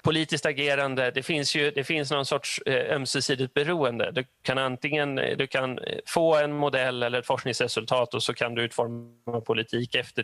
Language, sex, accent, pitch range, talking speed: English, male, Swedish, 120-140 Hz, 170 wpm